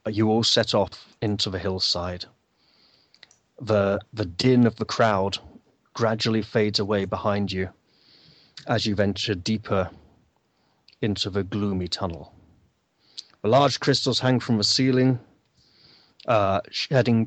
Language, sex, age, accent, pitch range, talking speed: English, male, 30-49, British, 100-125 Hz, 120 wpm